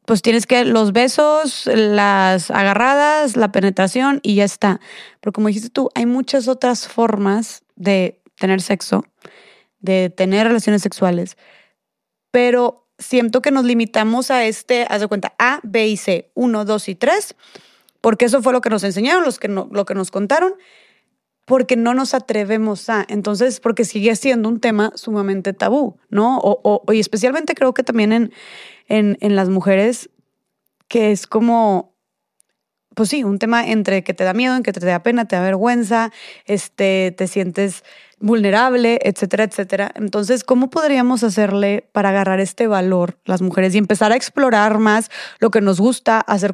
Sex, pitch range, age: female, 200-245 Hz, 20-39